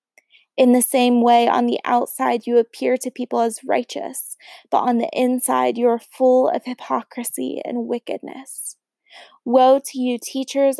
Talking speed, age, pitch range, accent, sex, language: 155 wpm, 20-39, 235-255 Hz, American, female, English